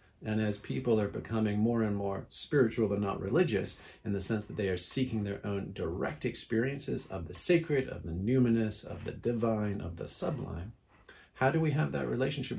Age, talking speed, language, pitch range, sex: 40-59, 195 wpm, English, 100-115 Hz, male